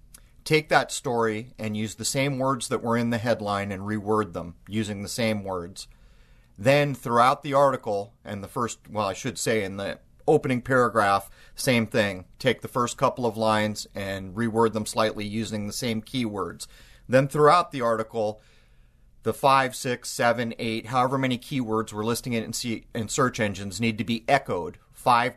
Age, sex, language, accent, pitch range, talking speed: 30-49, male, English, American, 105-130 Hz, 175 wpm